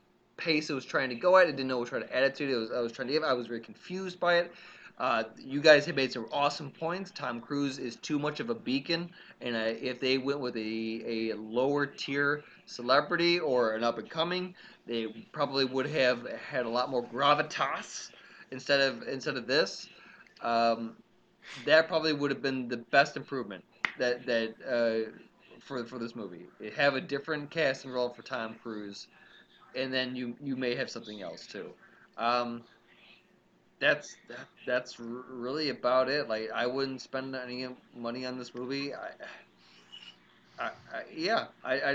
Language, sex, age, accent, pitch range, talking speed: English, male, 20-39, American, 115-145 Hz, 185 wpm